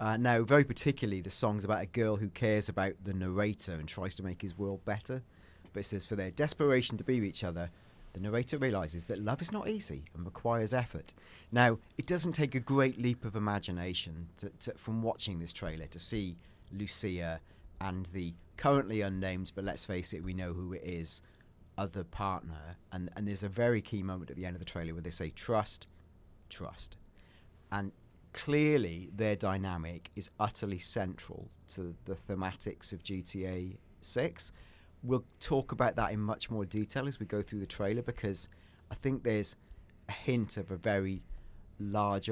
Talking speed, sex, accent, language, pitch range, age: 185 wpm, male, British, English, 90-110 Hz, 40-59